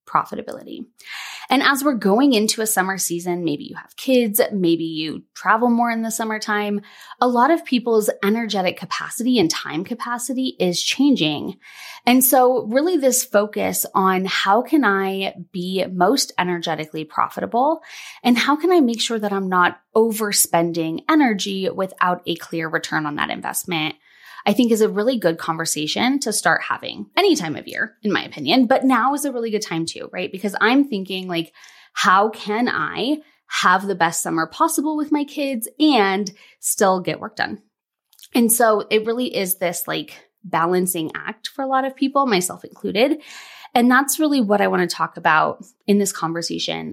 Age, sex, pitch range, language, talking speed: 20-39, female, 180-260 Hz, English, 175 wpm